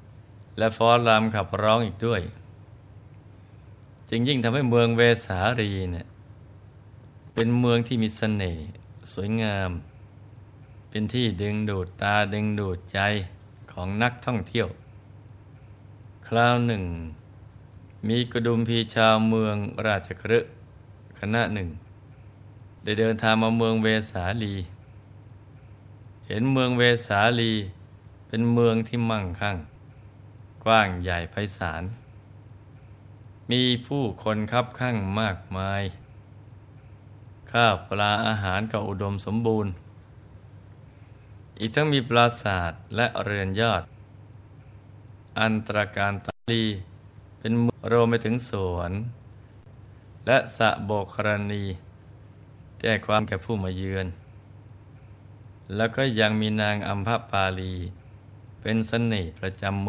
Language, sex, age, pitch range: Thai, male, 20-39, 100-115 Hz